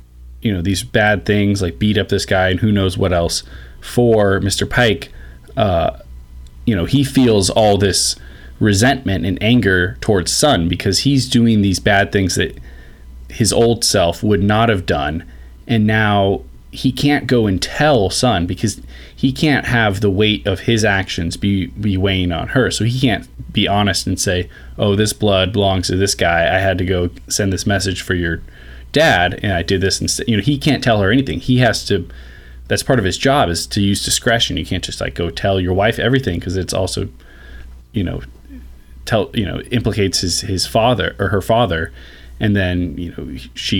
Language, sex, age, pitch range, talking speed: English, male, 20-39, 80-110 Hz, 195 wpm